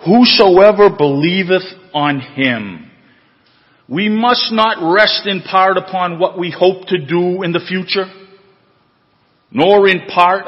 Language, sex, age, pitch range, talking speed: English, male, 50-69, 135-190 Hz, 125 wpm